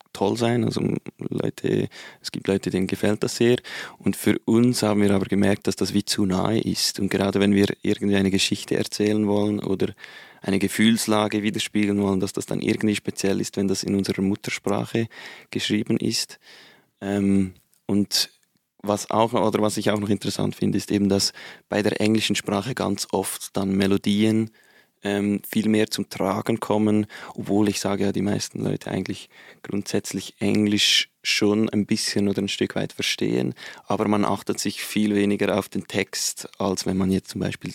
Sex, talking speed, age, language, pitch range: male, 170 wpm, 20-39, German, 95-105 Hz